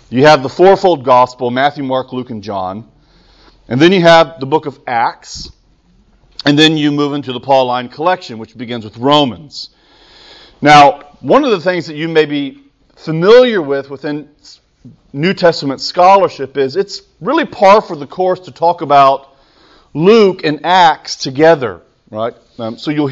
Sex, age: male, 40-59